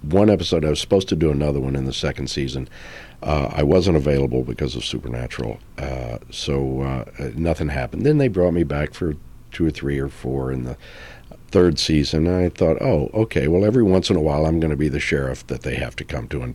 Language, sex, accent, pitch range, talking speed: English, male, American, 70-85 Hz, 230 wpm